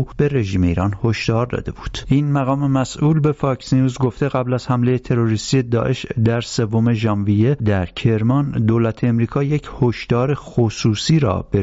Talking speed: 155 wpm